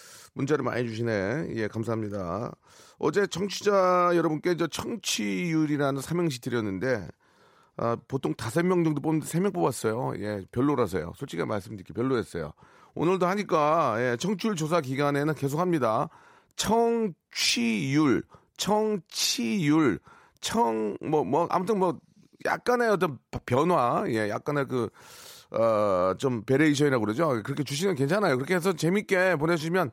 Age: 40-59